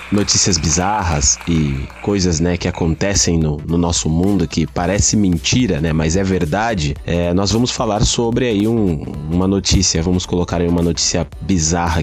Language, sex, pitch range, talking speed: Portuguese, male, 90-110 Hz, 165 wpm